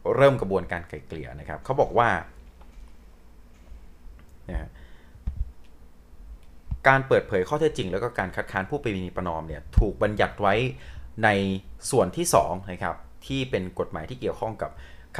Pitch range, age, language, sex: 80-110 Hz, 30-49, Thai, male